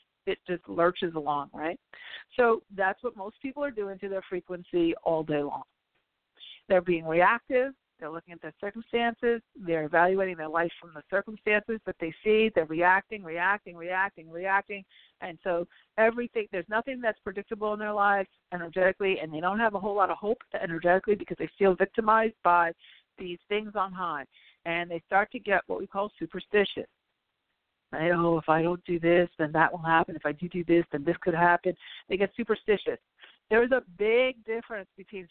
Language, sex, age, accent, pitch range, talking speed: English, female, 50-69, American, 170-220 Hz, 185 wpm